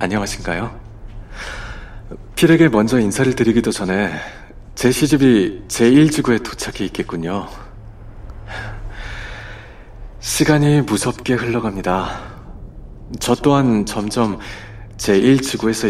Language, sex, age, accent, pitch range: Korean, male, 40-59, native, 105-120 Hz